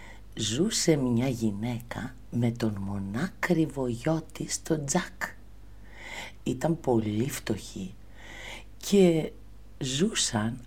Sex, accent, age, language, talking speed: female, native, 50-69, Greek, 85 wpm